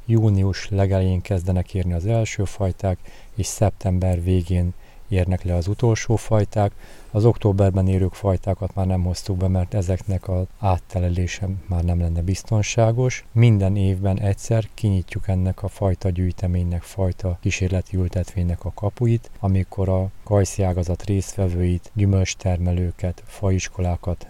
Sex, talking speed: male, 125 wpm